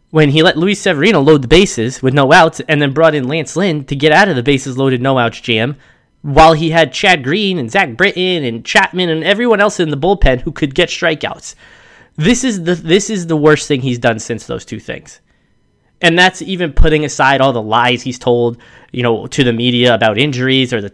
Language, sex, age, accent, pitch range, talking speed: English, male, 20-39, American, 125-160 Hz, 230 wpm